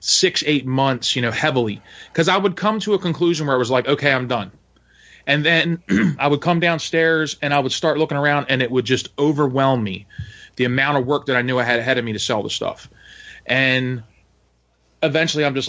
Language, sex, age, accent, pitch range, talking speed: English, male, 20-39, American, 120-145 Hz, 220 wpm